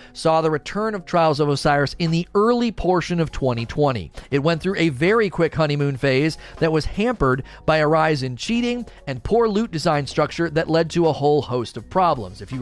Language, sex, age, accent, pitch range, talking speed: English, male, 40-59, American, 135-180 Hz, 210 wpm